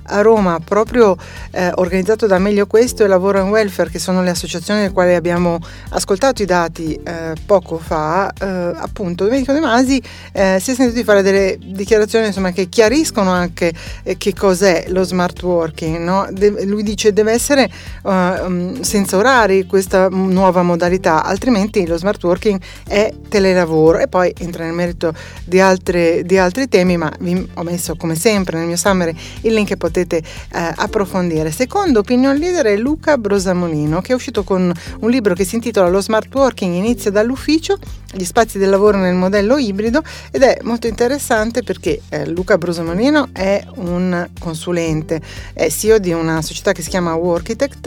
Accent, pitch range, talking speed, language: native, 175-215 Hz, 175 wpm, Italian